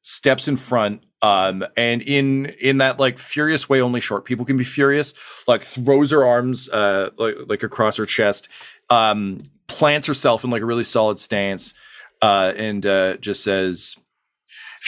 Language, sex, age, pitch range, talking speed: English, male, 40-59, 90-125 Hz, 170 wpm